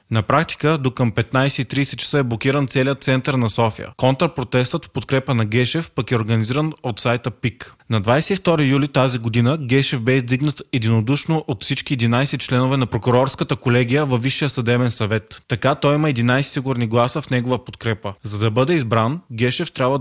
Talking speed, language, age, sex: 175 wpm, Bulgarian, 20-39, male